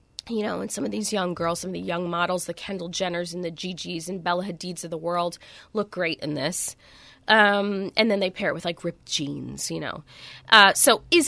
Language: English